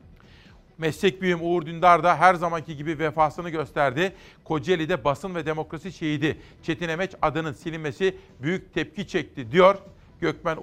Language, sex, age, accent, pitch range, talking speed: Turkish, male, 50-69, native, 140-180 Hz, 135 wpm